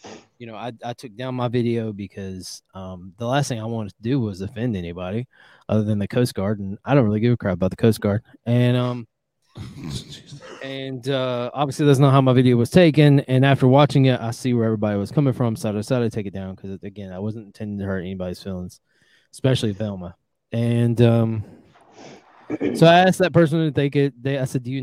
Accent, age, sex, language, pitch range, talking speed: American, 20-39, male, English, 105-135 Hz, 220 wpm